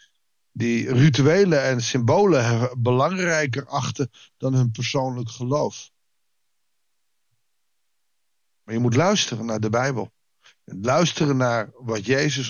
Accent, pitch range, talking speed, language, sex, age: Dutch, 125-165 Hz, 105 wpm, Dutch, male, 50-69